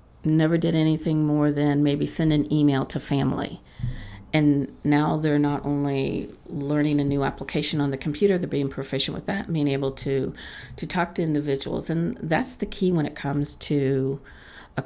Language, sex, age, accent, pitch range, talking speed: English, female, 50-69, American, 125-155 Hz, 180 wpm